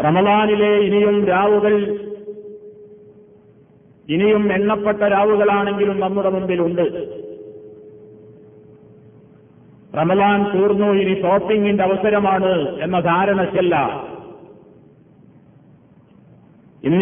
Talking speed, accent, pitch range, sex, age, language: 55 wpm, native, 190-210 Hz, male, 50-69, Malayalam